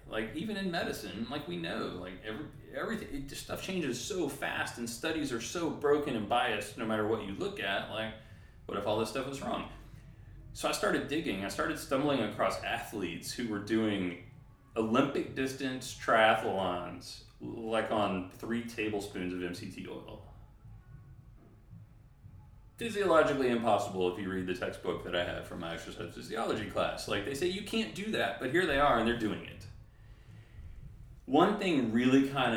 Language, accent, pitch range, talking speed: English, American, 100-125 Hz, 170 wpm